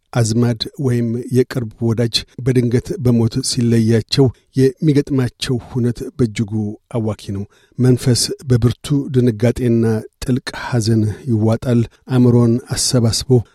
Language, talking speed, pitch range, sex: Amharic, 90 wpm, 115-130 Hz, male